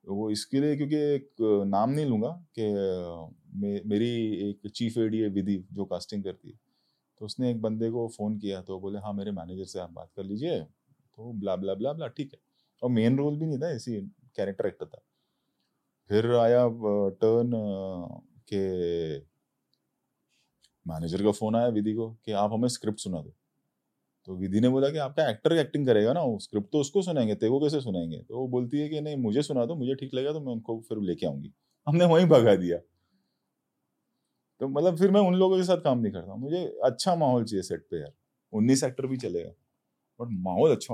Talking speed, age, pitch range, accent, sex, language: 150 wpm, 30-49, 100-135 Hz, native, male, Hindi